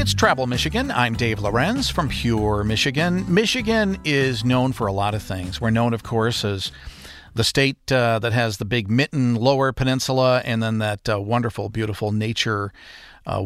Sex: male